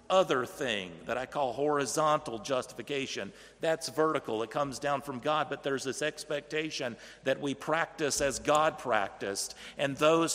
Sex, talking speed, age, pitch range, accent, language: male, 150 wpm, 50-69, 120-150 Hz, American, English